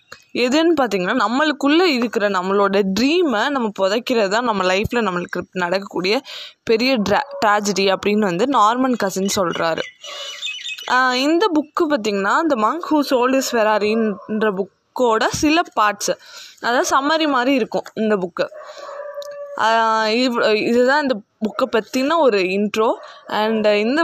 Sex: female